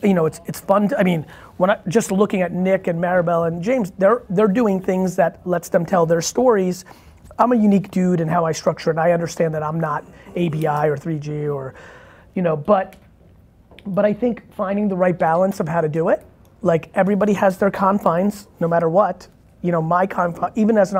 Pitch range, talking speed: 165-205 Hz, 215 wpm